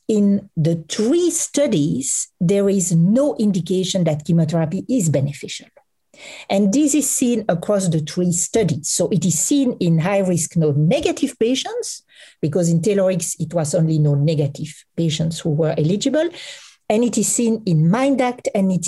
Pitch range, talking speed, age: 160-225 Hz, 150 wpm, 50-69